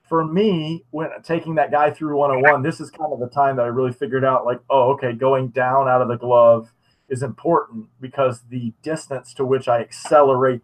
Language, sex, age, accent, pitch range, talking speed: English, male, 30-49, American, 125-160 Hz, 210 wpm